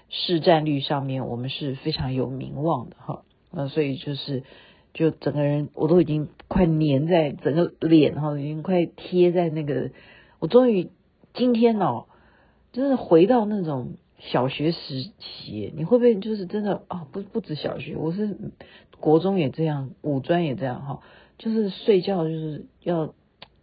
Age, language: 50-69, Chinese